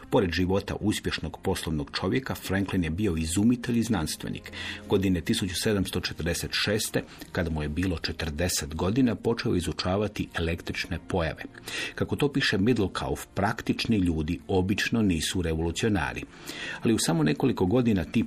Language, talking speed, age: Croatian, 125 wpm, 50-69